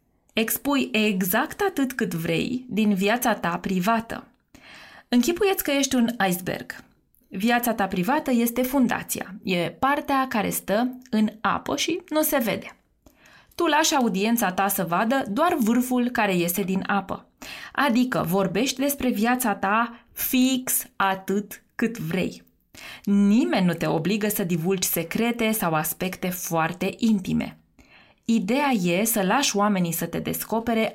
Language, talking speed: Romanian, 135 wpm